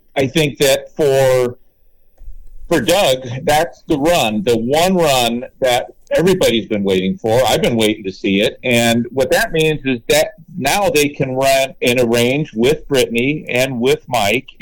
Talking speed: 170 wpm